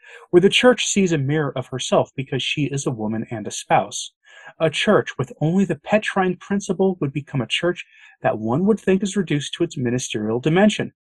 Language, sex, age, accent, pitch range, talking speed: English, male, 30-49, American, 125-190 Hz, 200 wpm